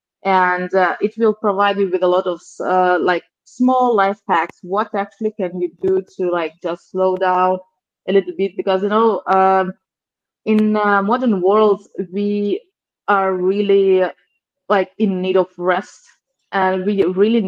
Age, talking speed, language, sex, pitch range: 20-39, 160 wpm, English, female, 185-215 Hz